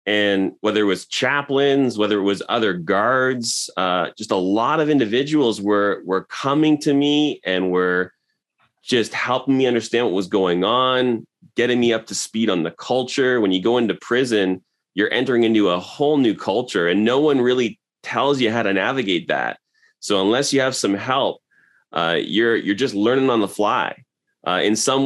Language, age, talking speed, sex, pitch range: English, 30-49, 185 wpm, male, 95-125 Hz